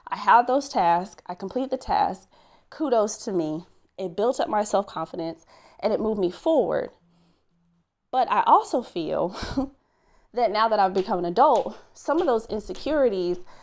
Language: English